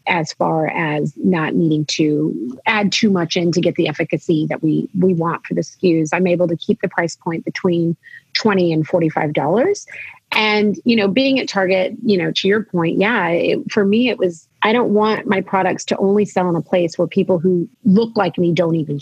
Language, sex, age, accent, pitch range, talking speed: English, female, 30-49, American, 155-190 Hz, 215 wpm